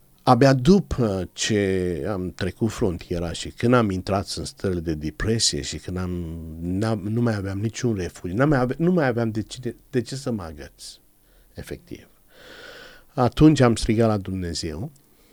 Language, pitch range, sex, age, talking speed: Romanian, 90-115 Hz, male, 50-69, 150 wpm